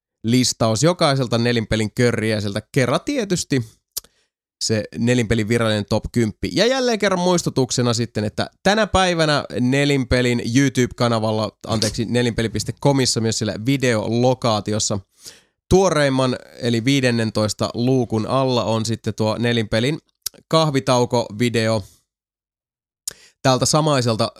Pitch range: 110-140 Hz